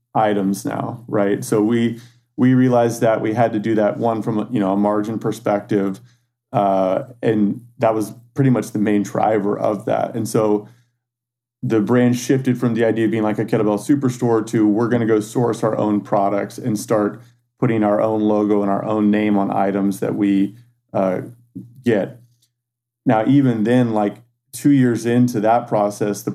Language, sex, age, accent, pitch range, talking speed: English, male, 30-49, American, 105-120 Hz, 180 wpm